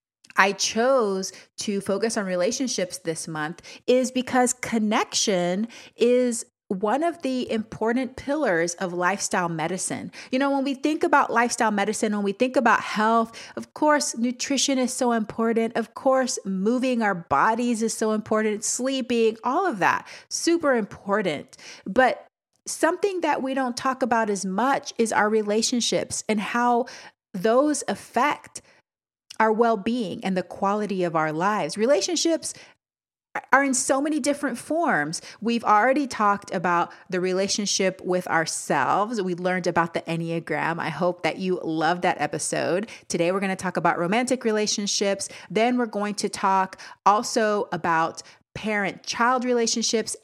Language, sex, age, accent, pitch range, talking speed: English, female, 30-49, American, 180-245 Hz, 145 wpm